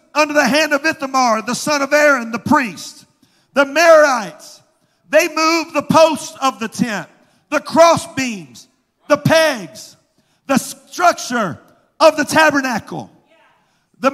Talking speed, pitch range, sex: 130 wpm, 265-320 Hz, male